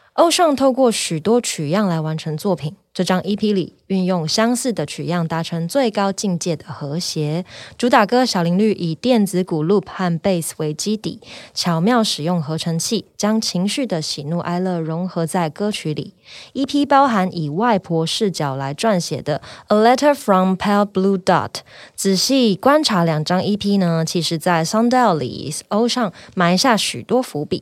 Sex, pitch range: female, 165-225 Hz